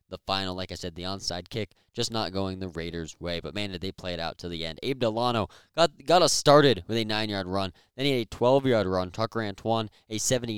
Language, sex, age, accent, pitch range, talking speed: English, male, 20-39, American, 95-120 Hz, 245 wpm